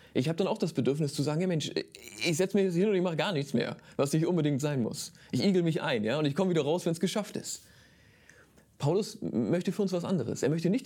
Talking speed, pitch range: 270 wpm, 130-175 Hz